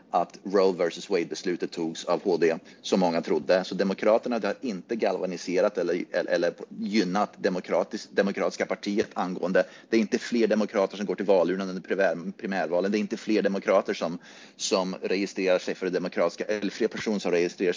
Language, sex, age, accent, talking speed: Swedish, male, 30-49, native, 180 wpm